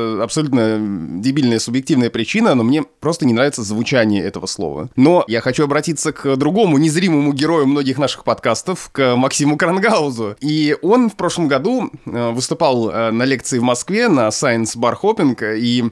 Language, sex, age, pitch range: Russian, male, 20-39, 125-160 Hz